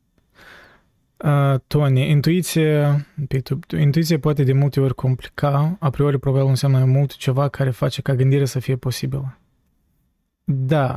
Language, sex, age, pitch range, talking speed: Romanian, male, 20-39, 125-145 Hz, 125 wpm